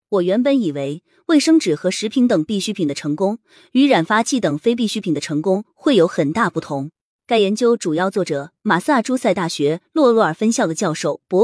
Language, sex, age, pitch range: Chinese, female, 20-39, 175-240 Hz